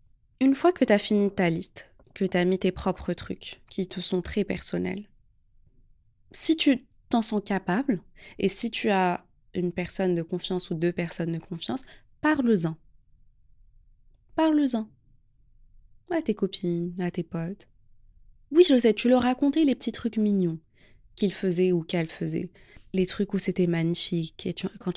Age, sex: 20-39, female